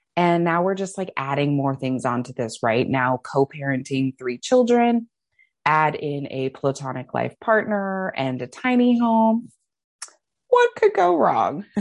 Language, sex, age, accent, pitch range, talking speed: English, female, 20-39, American, 130-170 Hz, 145 wpm